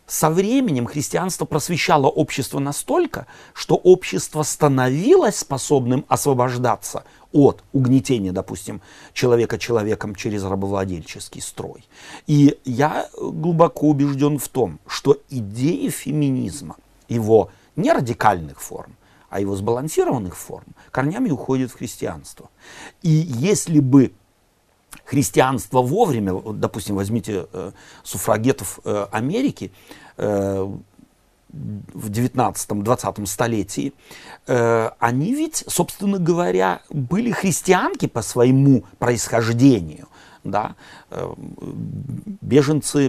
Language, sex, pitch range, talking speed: Russian, male, 110-155 Hz, 90 wpm